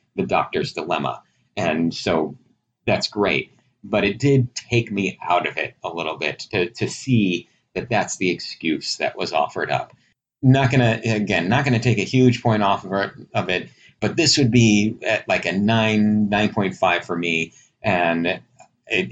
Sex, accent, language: male, American, English